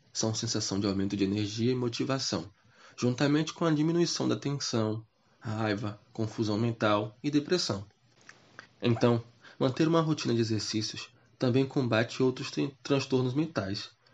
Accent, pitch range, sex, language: Brazilian, 110-130 Hz, male, Portuguese